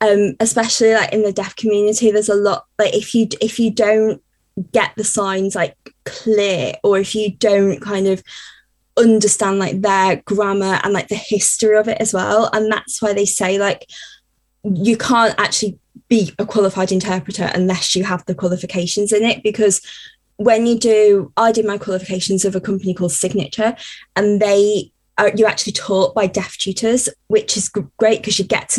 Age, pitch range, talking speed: 20-39, 195-220 Hz, 180 wpm